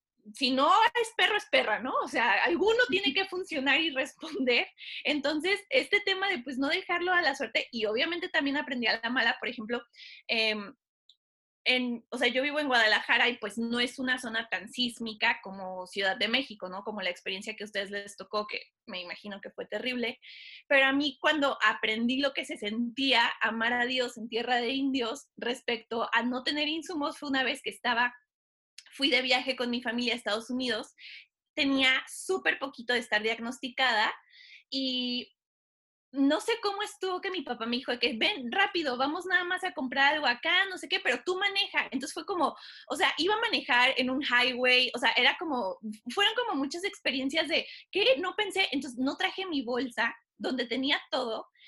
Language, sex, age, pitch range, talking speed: Spanish, female, 20-39, 235-330 Hz, 195 wpm